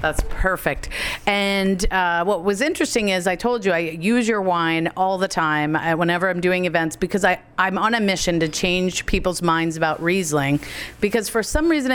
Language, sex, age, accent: English, female, 40-59, American